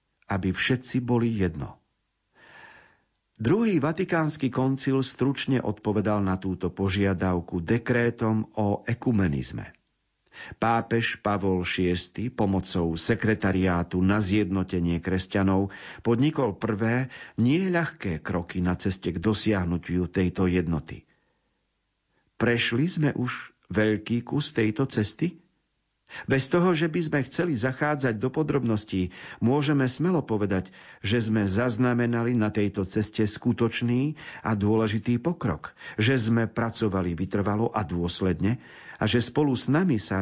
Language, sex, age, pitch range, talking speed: Slovak, male, 50-69, 100-130 Hz, 110 wpm